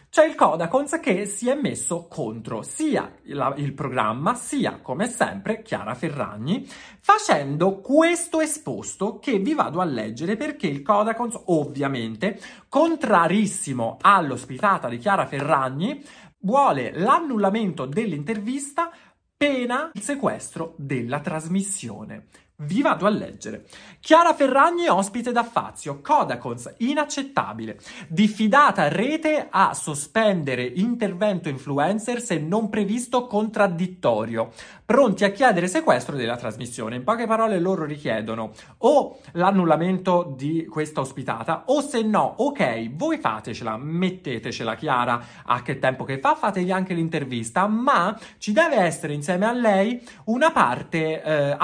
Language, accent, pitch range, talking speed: Italian, native, 140-230 Hz, 120 wpm